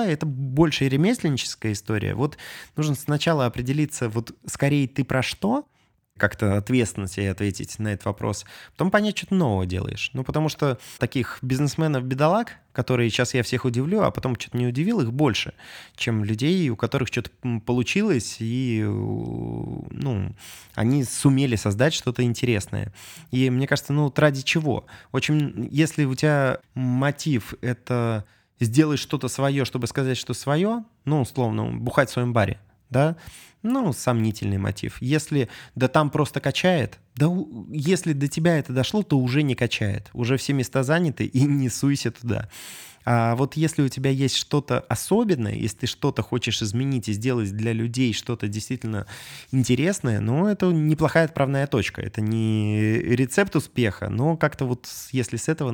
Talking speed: 155 wpm